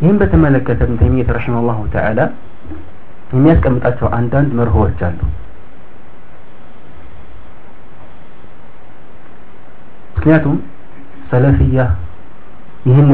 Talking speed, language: 70 wpm, Amharic